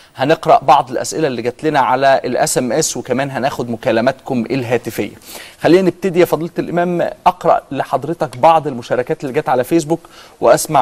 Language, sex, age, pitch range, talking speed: Arabic, male, 30-49, 140-180 Hz, 150 wpm